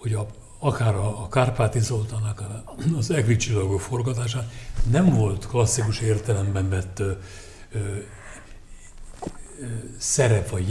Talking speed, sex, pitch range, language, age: 90 wpm, male, 100-120 Hz, Hungarian, 60-79